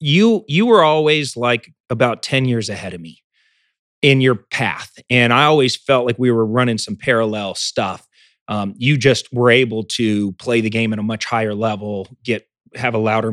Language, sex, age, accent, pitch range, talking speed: English, male, 30-49, American, 110-135 Hz, 195 wpm